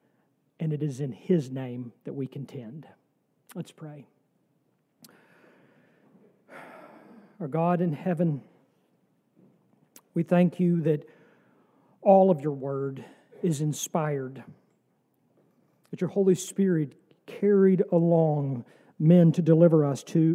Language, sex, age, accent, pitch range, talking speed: English, male, 50-69, American, 150-185 Hz, 105 wpm